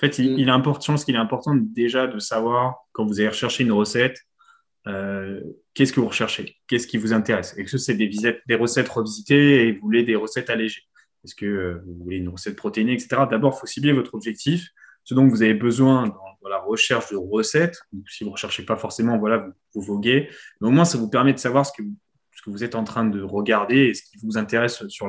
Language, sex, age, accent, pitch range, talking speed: French, male, 20-39, French, 105-135 Hz, 245 wpm